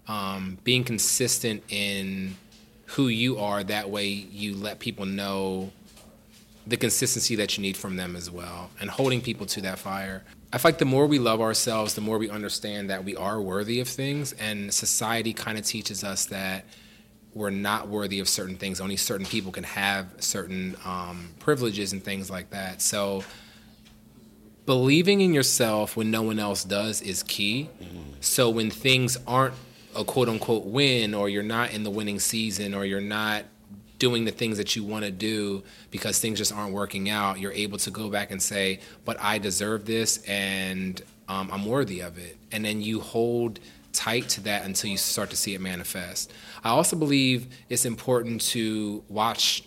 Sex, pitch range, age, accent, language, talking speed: male, 100-115 Hz, 30-49, American, English, 180 wpm